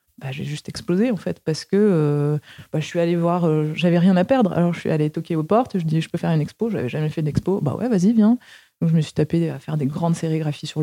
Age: 20-39